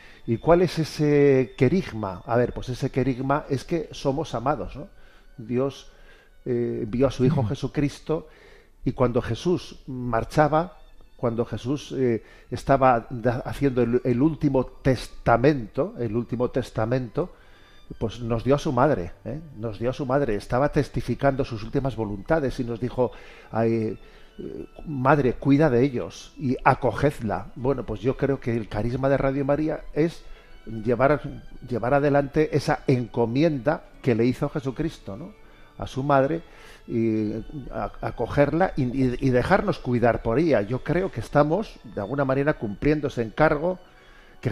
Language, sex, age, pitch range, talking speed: Spanish, male, 40-59, 120-145 Hz, 150 wpm